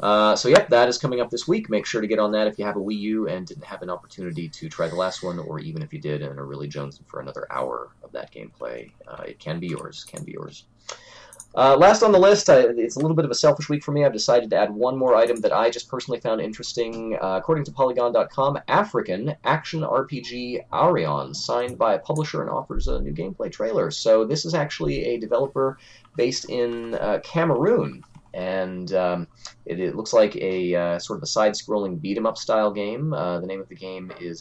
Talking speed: 235 wpm